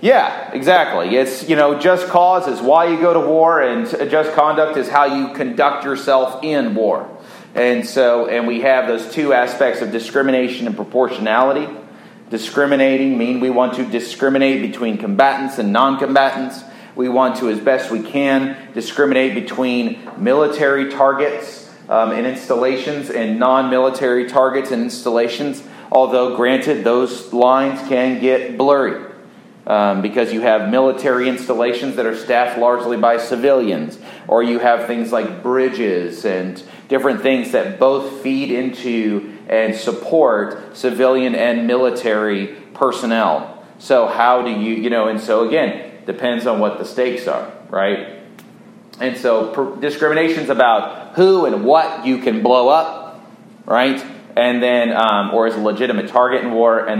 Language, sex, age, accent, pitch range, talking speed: English, male, 30-49, American, 120-140 Hz, 150 wpm